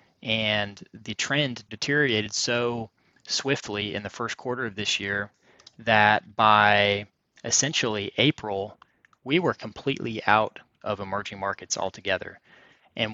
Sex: male